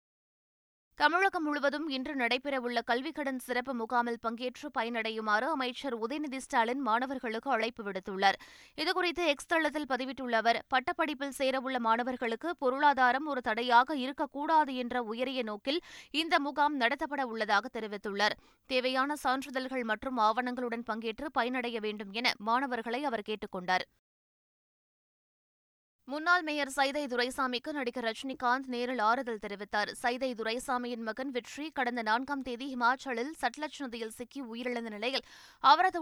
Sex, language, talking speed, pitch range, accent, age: female, Tamil, 115 wpm, 230-275 Hz, native, 20-39